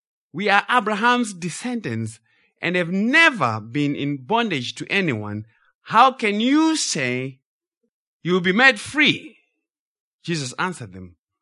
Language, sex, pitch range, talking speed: English, male, 115-185 Hz, 125 wpm